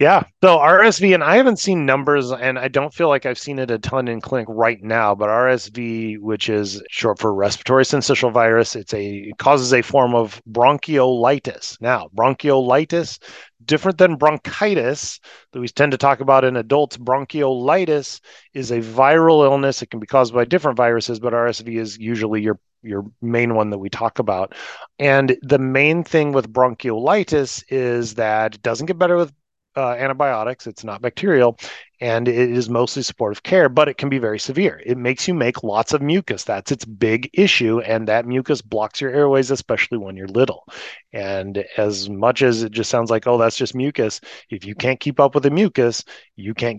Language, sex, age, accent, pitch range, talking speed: English, male, 30-49, American, 110-135 Hz, 190 wpm